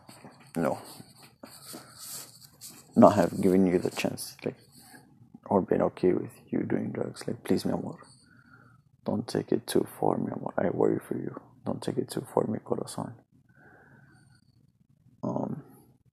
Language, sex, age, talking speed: English, male, 20-39, 140 wpm